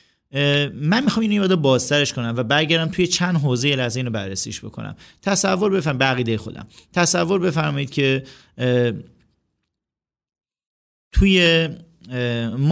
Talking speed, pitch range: 120 wpm, 115-145 Hz